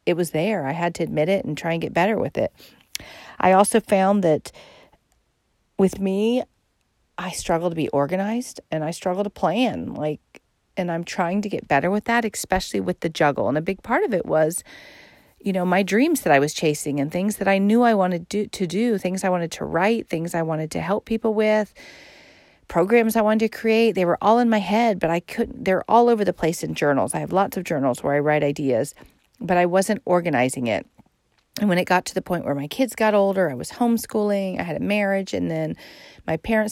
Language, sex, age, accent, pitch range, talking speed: English, female, 40-59, American, 165-215 Hz, 225 wpm